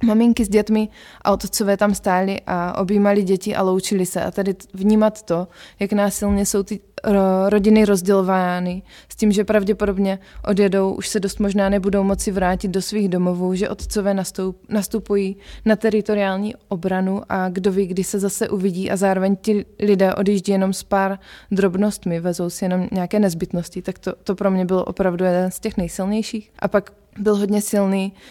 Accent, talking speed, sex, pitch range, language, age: native, 175 wpm, female, 185-205 Hz, Czech, 20-39